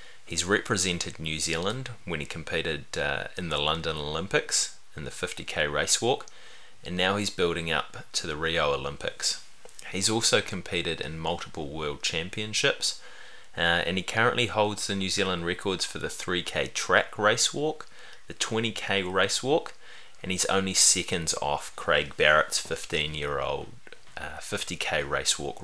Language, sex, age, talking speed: English, male, 30-49, 145 wpm